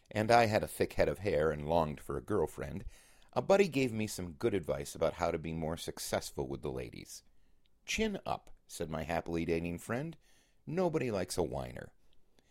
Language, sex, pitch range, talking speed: English, male, 80-120 Hz, 190 wpm